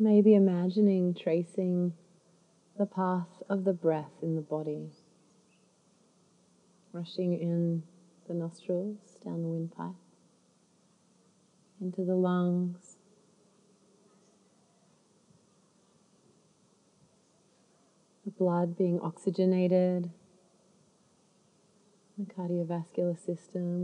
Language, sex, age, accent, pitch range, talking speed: English, female, 30-49, Australian, 175-195 Hz, 70 wpm